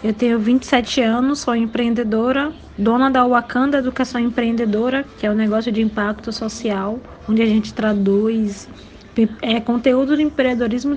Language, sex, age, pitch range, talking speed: Portuguese, female, 20-39, 225-255 Hz, 150 wpm